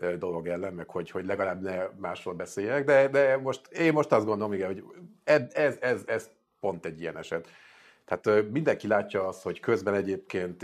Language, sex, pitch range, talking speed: Hungarian, male, 100-150 Hz, 180 wpm